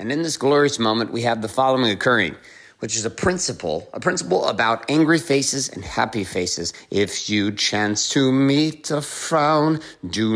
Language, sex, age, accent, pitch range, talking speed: English, male, 50-69, American, 105-160 Hz, 175 wpm